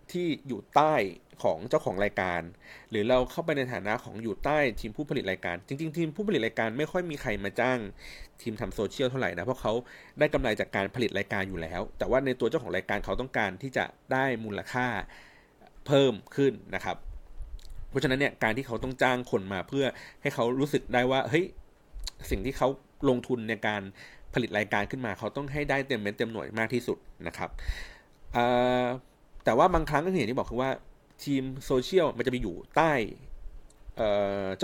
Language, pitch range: Thai, 105-135 Hz